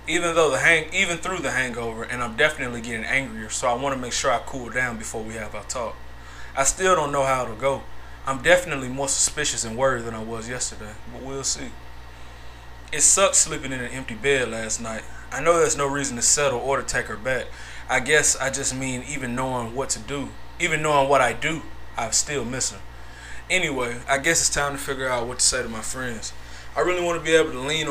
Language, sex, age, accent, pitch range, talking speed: English, male, 20-39, American, 105-140 Hz, 235 wpm